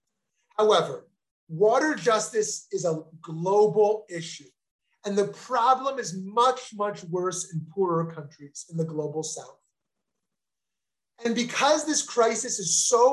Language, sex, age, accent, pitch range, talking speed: English, male, 30-49, American, 160-210 Hz, 125 wpm